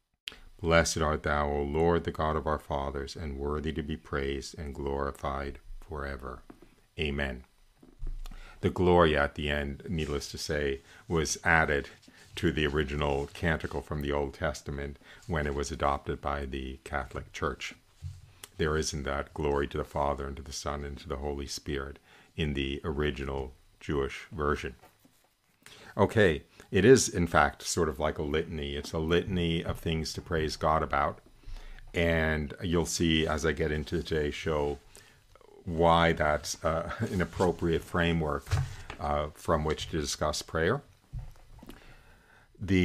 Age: 50-69